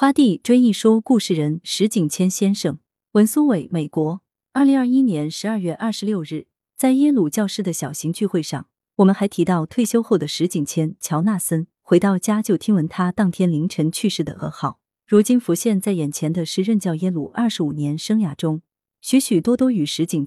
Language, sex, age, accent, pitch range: Chinese, female, 30-49, native, 160-225 Hz